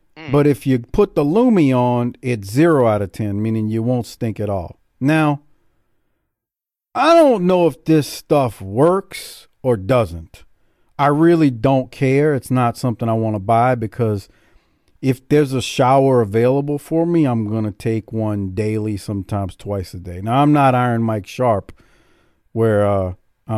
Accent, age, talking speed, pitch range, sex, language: American, 50-69, 165 wpm, 110-170 Hz, male, English